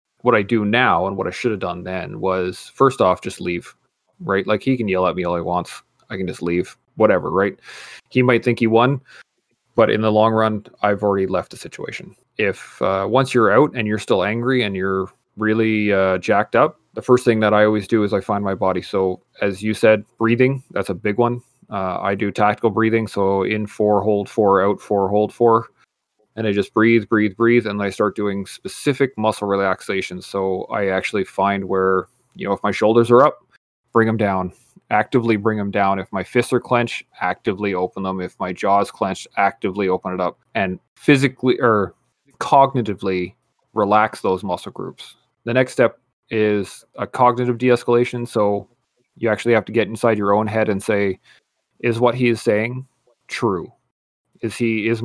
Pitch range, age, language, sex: 95-115 Hz, 30-49, English, male